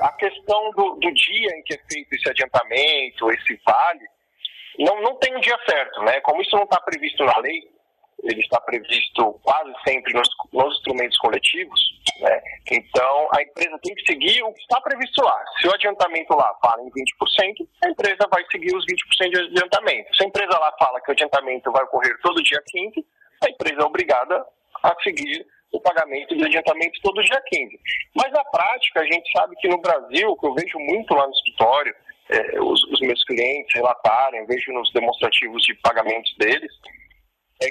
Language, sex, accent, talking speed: Portuguese, male, Brazilian, 190 wpm